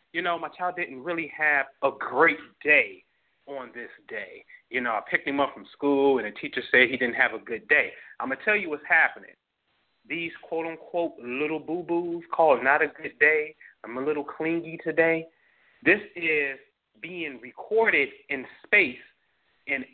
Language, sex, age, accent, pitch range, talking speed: English, male, 30-49, American, 140-225 Hz, 180 wpm